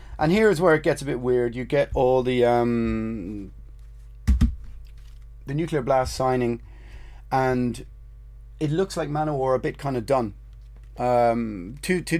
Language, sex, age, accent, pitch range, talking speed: English, male, 30-49, British, 115-140 Hz, 155 wpm